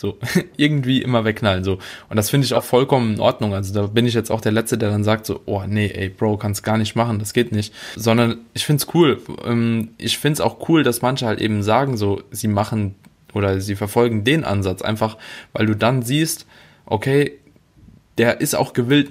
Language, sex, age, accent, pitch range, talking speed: German, male, 20-39, German, 100-120 Hz, 215 wpm